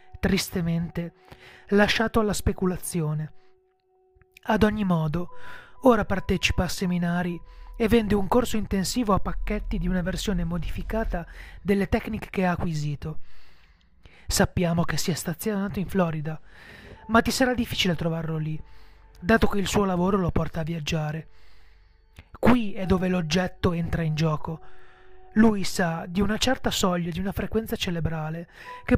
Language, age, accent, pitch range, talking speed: Italian, 30-49, native, 170-225 Hz, 140 wpm